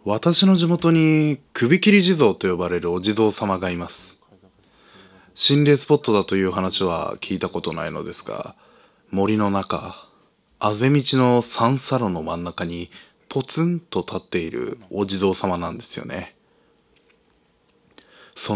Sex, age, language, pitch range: male, 20-39, Japanese, 95-120 Hz